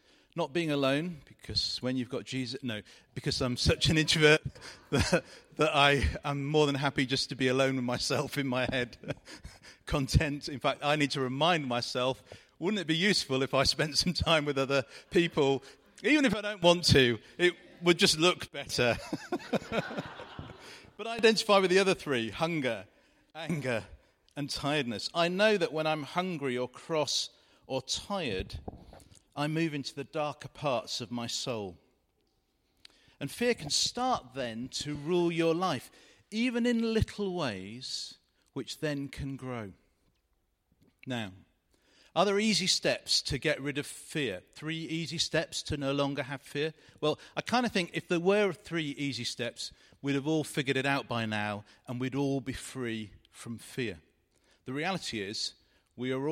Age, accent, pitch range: 40-59, British, 125-160 Hz